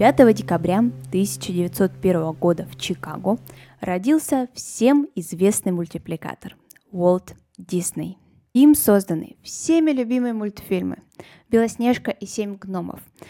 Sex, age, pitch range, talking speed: female, 10-29, 185-240 Hz, 95 wpm